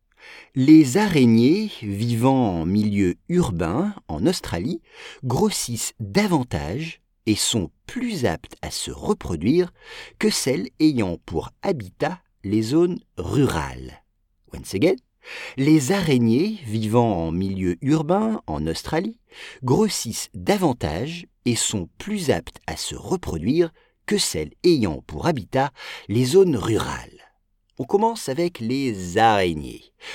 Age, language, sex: 50-69, English, male